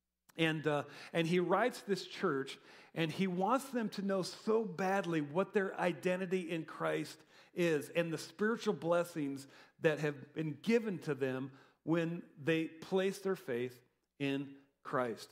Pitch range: 150-200 Hz